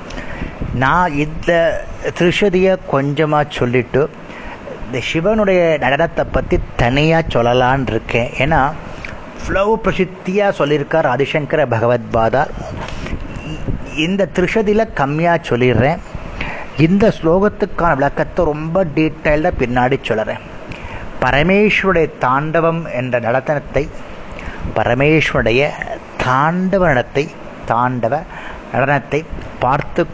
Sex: male